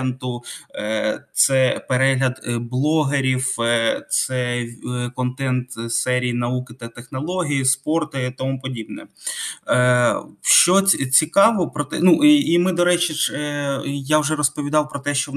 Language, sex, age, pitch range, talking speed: Ukrainian, male, 20-39, 125-150 Hz, 115 wpm